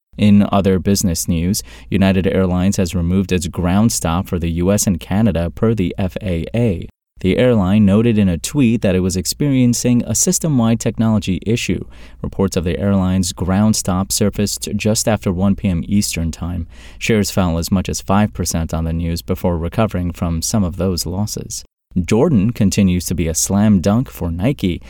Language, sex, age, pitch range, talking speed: English, male, 30-49, 90-110 Hz, 170 wpm